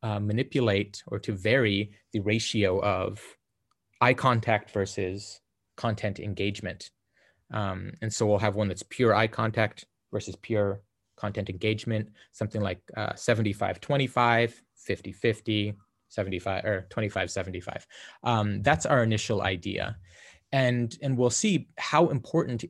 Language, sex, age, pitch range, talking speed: English, male, 20-39, 100-120 Hz, 130 wpm